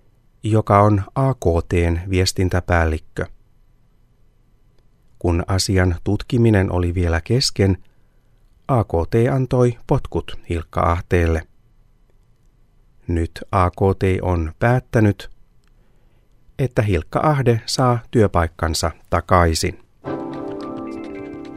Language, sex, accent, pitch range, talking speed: Finnish, male, native, 90-120 Hz, 65 wpm